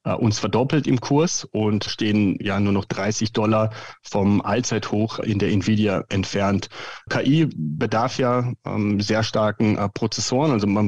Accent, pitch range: German, 105-120 Hz